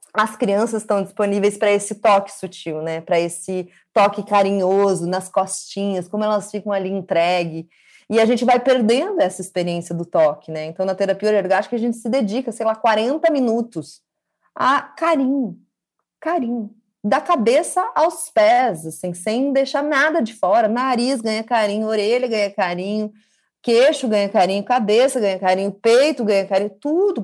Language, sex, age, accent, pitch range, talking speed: Portuguese, female, 20-39, Brazilian, 195-255 Hz, 155 wpm